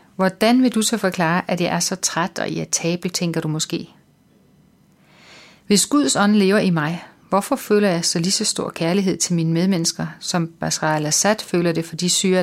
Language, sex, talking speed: Danish, female, 195 wpm